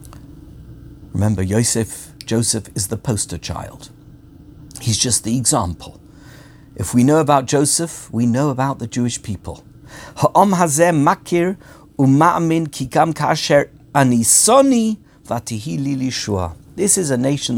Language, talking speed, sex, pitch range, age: English, 90 wpm, male, 125-170 Hz, 50-69